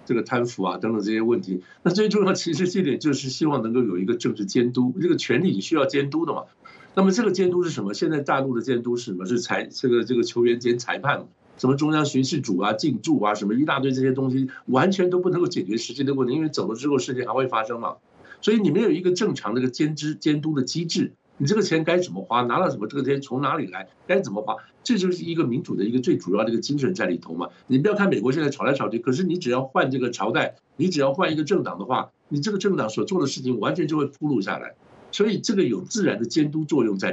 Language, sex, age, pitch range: Chinese, male, 60-79, 120-175 Hz